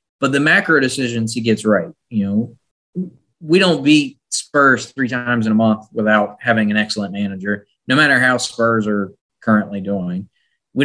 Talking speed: 170 wpm